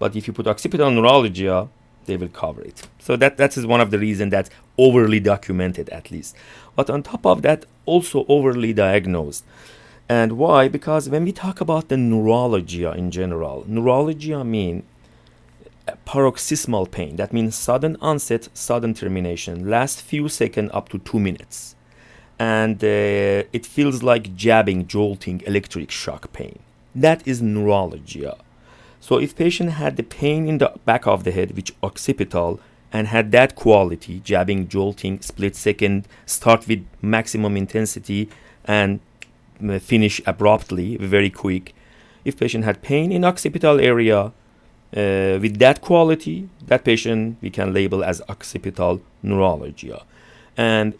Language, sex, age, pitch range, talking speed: English, male, 40-59, 100-125 Hz, 145 wpm